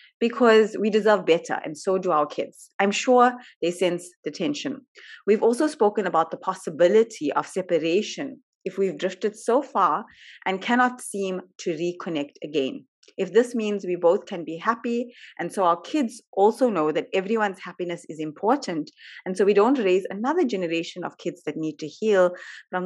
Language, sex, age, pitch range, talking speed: English, female, 30-49, 170-245 Hz, 175 wpm